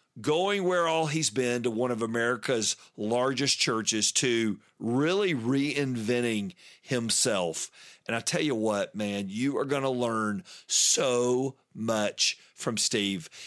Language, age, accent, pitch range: English, 50-69, American, 110-140 Hz